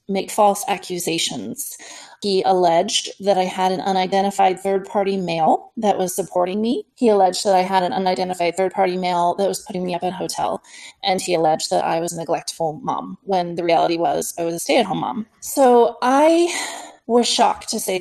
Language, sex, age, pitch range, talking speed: English, female, 30-49, 180-215 Hz, 190 wpm